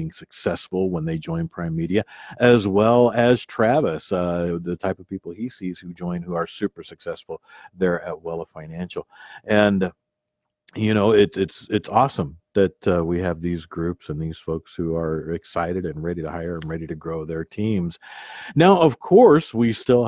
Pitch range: 85-100 Hz